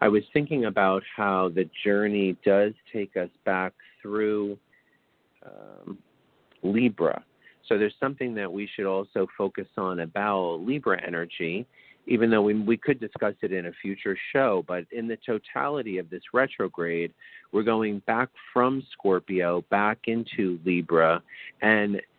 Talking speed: 145 wpm